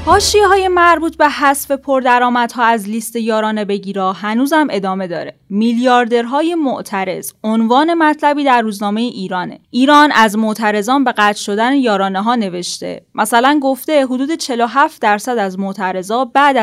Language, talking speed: Persian, 135 wpm